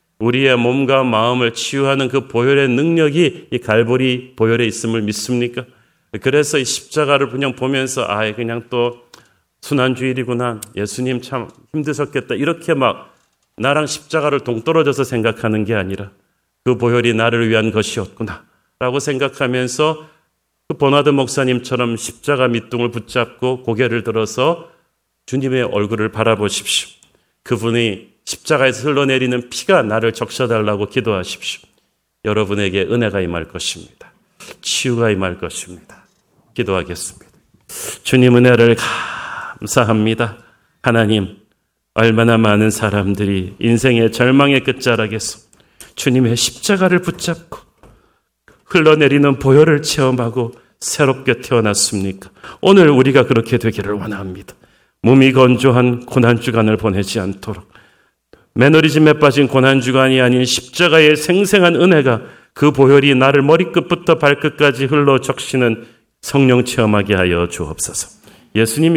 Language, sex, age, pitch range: Korean, male, 40-59, 110-135 Hz